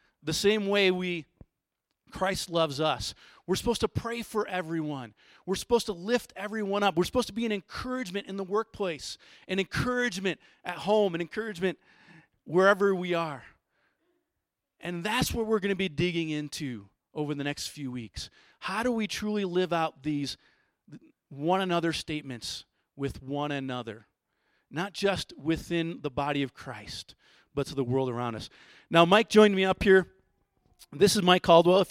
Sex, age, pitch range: male, 40-59, 150-195 Hz